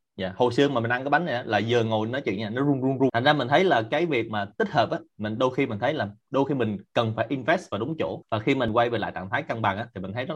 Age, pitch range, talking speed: 20-39, 115-145 Hz, 355 wpm